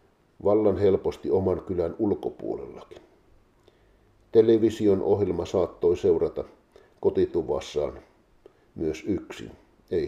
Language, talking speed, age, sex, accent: Finnish, 75 wpm, 50-69, male, native